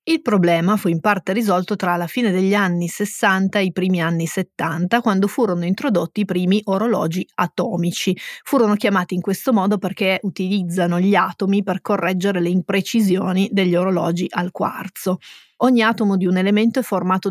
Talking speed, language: 165 wpm, Italian